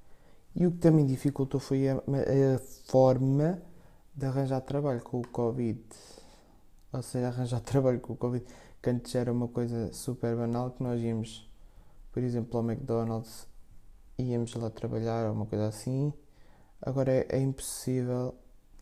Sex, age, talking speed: male, 20-39, 150 wpm